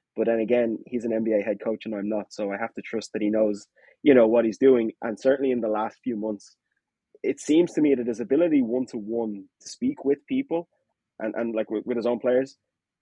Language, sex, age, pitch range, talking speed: English, male, 20-39, 110-125 Hz, 235 wpm